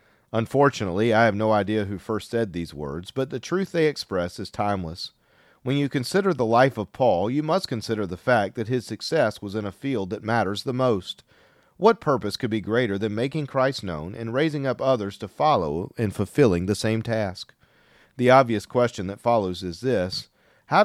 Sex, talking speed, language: male, 195 wpm, English